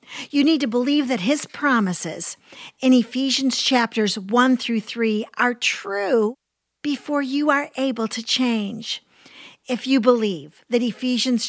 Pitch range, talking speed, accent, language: 215-265 Hz, 135 wpm, American, English